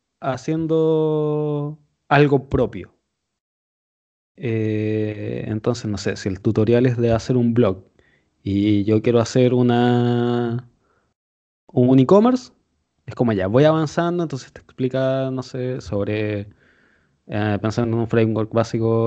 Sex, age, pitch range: male, 20-39, 115-155 Hz